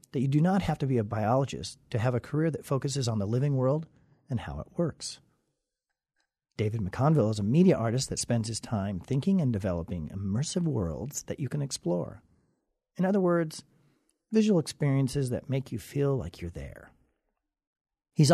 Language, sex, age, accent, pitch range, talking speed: English, male, 40-59, American, 110-145 Hz, 180 wpm